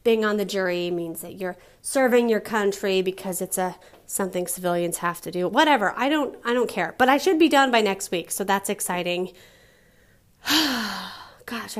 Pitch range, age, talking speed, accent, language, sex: 200-270 Hz, 30-49, 185 wpm, American, English, female